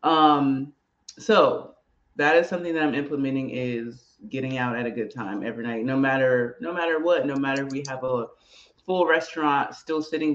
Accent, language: American, English